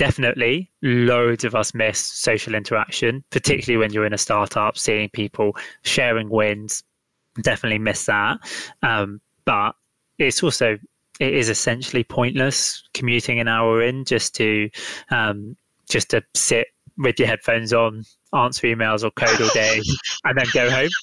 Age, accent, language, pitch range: 20-39, British, English, 110-130 Hz